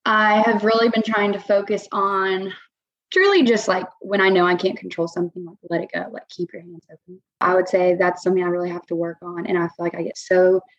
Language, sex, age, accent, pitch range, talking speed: English, female, 20-39, American, 180-220 Hz, 255 wpm